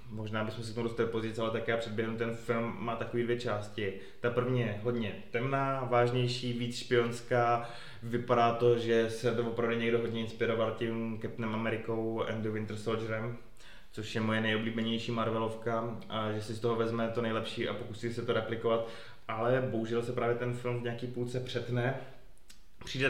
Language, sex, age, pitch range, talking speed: Czech, male, 20-39, 110-120 Hz, 175 wpm